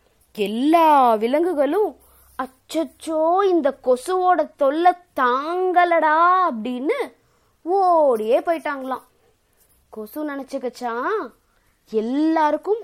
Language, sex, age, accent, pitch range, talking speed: Tamil, female, 20-39, native, 250-375 Hz, 55 wpm